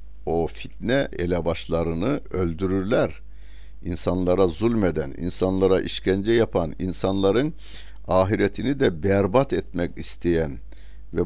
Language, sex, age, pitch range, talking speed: Turkish, male, 60-79, 90-100 Hz, 85 wpm